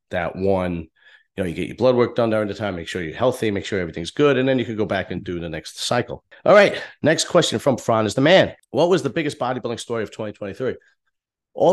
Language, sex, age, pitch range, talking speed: English, male, 30-49, 95-120 Hz, 250 wpm